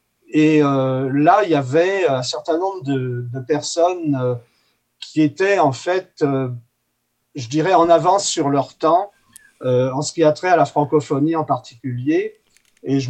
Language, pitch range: French, 130-155 Hz